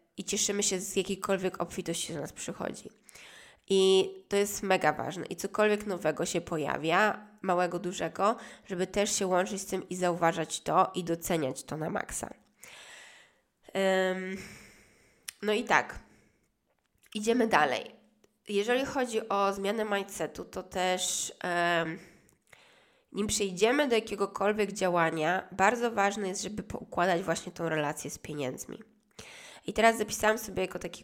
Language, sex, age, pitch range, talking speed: Polish, female, 20-39, 175-210 Hz, 130 wpm